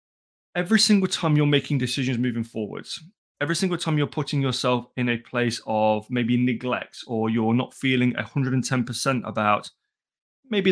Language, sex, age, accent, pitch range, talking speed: English, male, 20-39, British, 120-150 Hz, 150 wpm